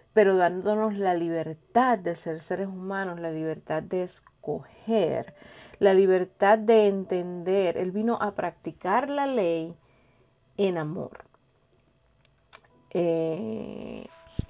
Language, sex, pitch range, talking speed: Spanish, female, 160-190 Hz, 105 wpm